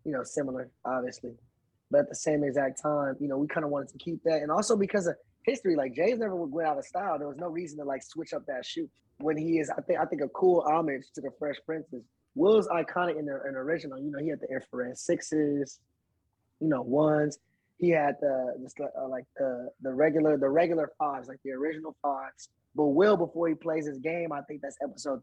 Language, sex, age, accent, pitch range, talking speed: English, male, 20-39, American, 135-165 Hz, 240 wpm